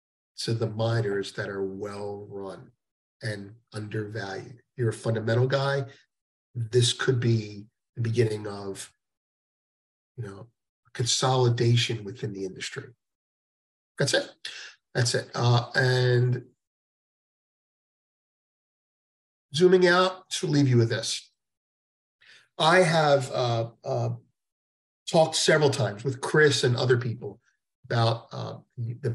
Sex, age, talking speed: male, 50-69, 110 wpm